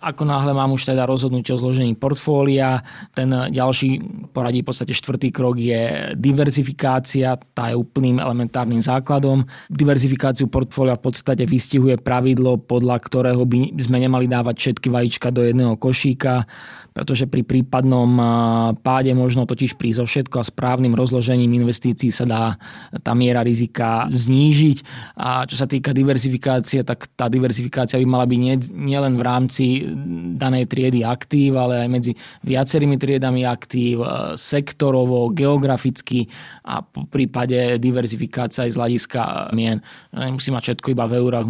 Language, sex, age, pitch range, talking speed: Slovak, male, 20-39, 120-130 Hz, 140 wpm